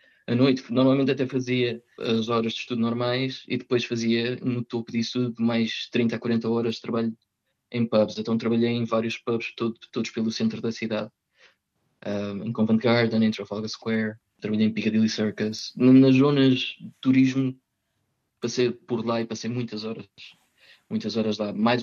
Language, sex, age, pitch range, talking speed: Portuguese, male, 20-39, 115-150 Hz, 170 wpm